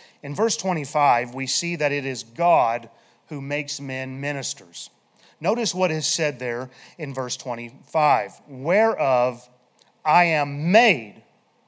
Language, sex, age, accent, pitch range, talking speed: English, male, 30-49, American, 150-220 Hz, 130 wpm